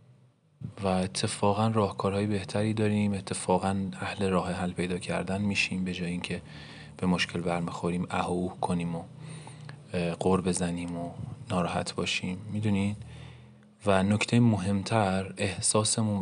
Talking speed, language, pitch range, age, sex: 120 wpm, Persian, 90-105 Hz, 30-49, male